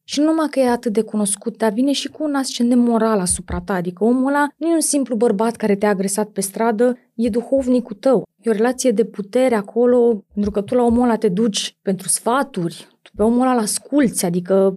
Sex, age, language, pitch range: female, 20-39, Romanian, 205-265 Hz